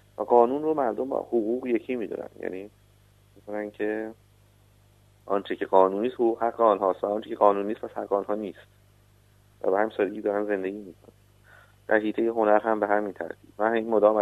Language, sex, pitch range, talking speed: Persian, male, 100-110 Hz, 185 wpm